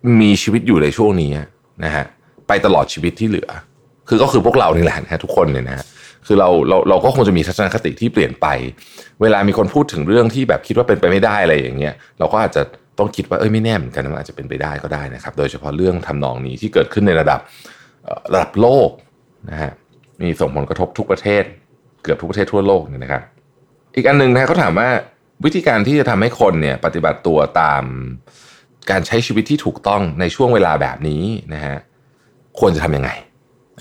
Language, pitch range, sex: Thai, 70-115 Hz, male